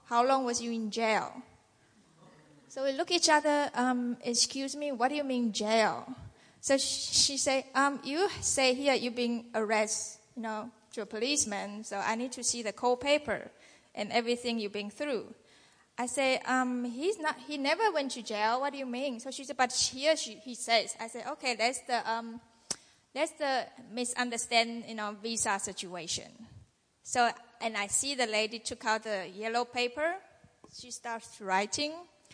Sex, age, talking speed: female, 20-39, 180 wpm